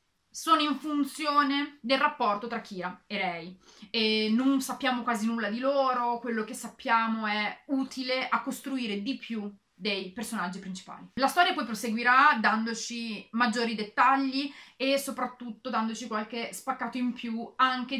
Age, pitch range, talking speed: 30-49, 220-270 Hz, 145 wpm